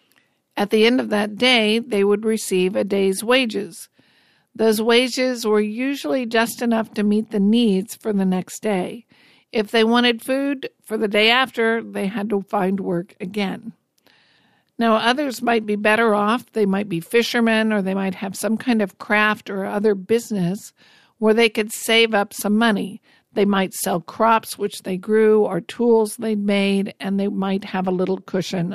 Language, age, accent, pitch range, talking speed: English, 50-69, American, 195-230 Hz, 180 wpm